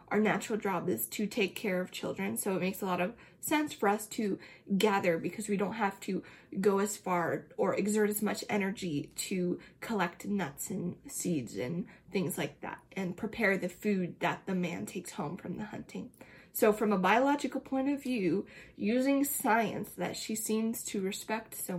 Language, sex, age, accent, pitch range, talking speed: English, female, 20-39, American, 190-225 Hz, 190 wpm